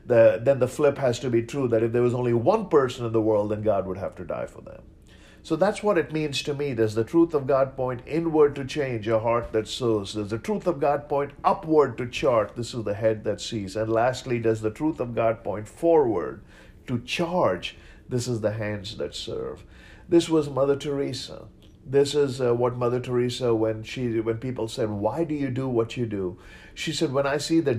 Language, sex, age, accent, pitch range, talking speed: English, male, 50-69, Indian, 110-135 Hz, 225 wpm